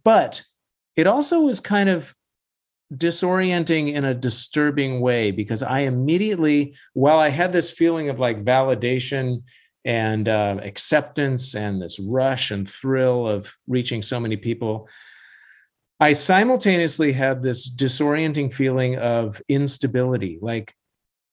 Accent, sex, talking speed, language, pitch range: American, male, 125 wpm, English, 120-150 Hz